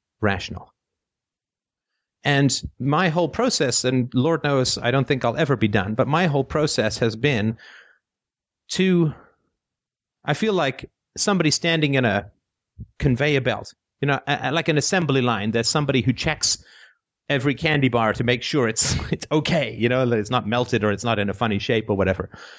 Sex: male